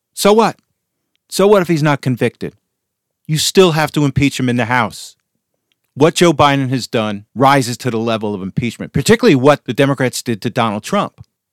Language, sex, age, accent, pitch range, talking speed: English, male, 50-69, American, 110-160 Hz, 185 wpm